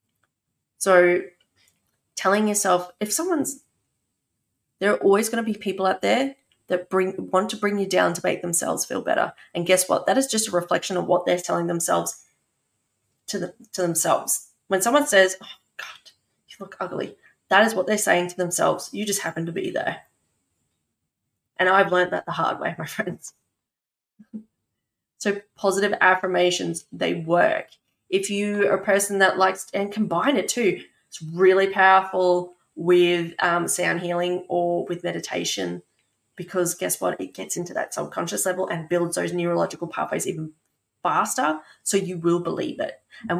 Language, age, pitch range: English, 20-39, 175-205 Hz